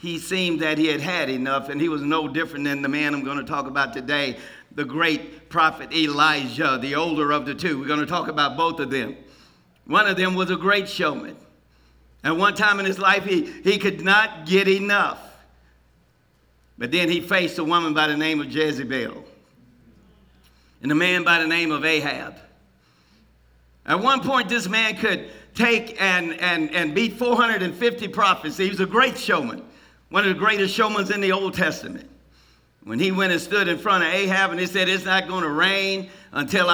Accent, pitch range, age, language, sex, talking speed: American, 140-190 Hz, 50-69, English, male, 200 wpm